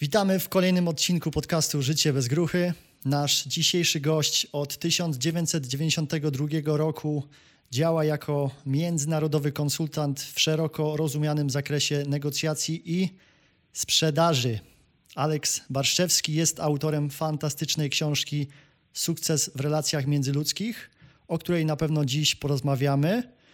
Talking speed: 105 wpm